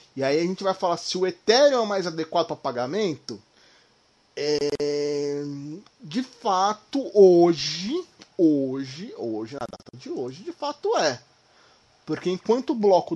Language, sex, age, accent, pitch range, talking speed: Portuguese, male, 20-39, Brazilian, 120-165 Hz, 140 wpm